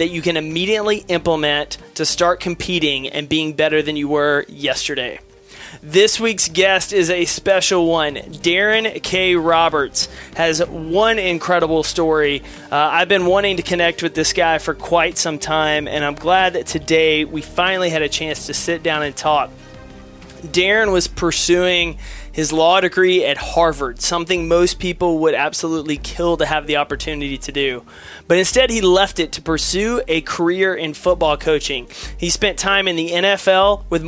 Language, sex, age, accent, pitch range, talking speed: English, male, 30-49, American, 155-185 Hz, 170 wpm